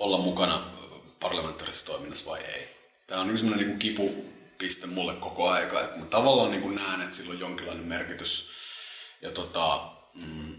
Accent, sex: native, male